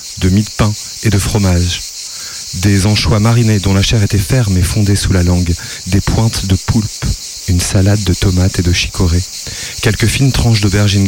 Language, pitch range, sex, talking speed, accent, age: French, 90-110 Hz, male, 190 wpm, French, 30-49